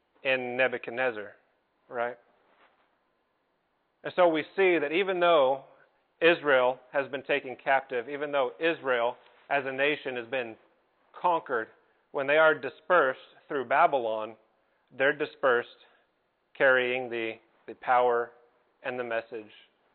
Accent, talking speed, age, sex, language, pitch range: American, 115 wpm, 40-59, male, English, 130-170 Hz